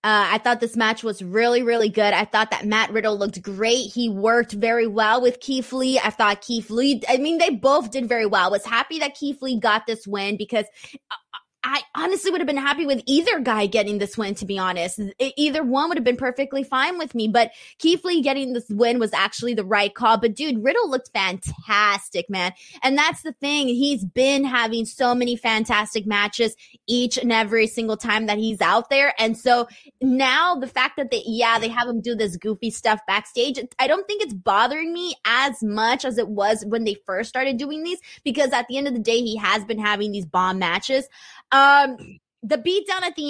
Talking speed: 220 wpm